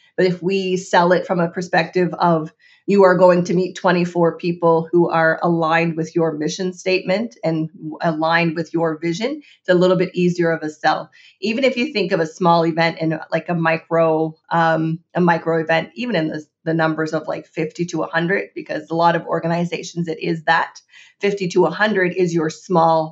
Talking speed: 195 wpm